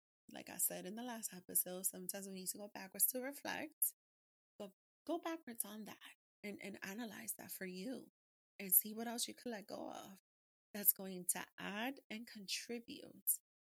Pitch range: 185-240 Hz